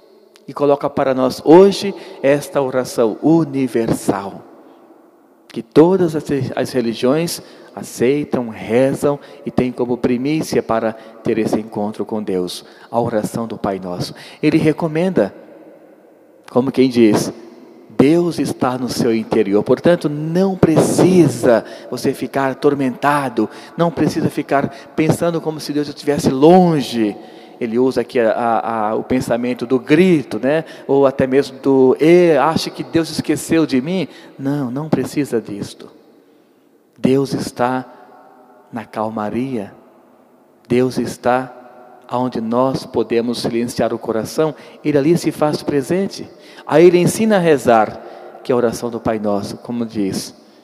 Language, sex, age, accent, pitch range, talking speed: Portuguese, male, 40-59, Brazilian, 120-155 Hz, 135 wpm